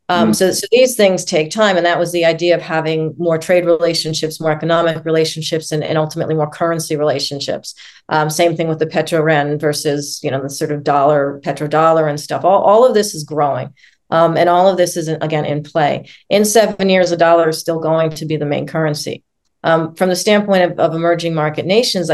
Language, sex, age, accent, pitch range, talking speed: English, female, 40-59, American, 155-175 Hz, 215 wpm